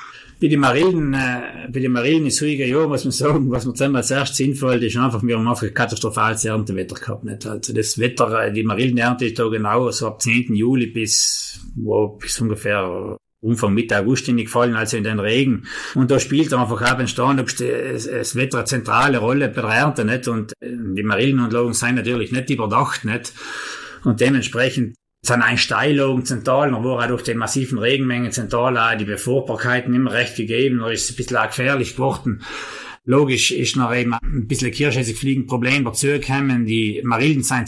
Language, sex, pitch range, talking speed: German, male, 115-135 Hz, 185 wpm